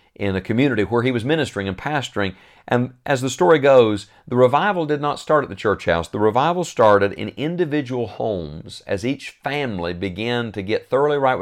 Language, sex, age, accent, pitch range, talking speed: English, male, 50-69, American, 95-125 Hz, 195 wpm